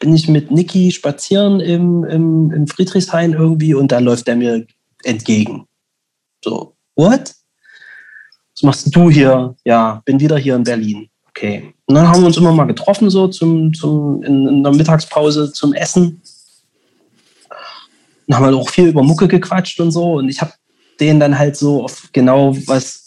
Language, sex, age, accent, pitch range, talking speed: German, male, 30-49, German, 130-165 Hz, 175 wpm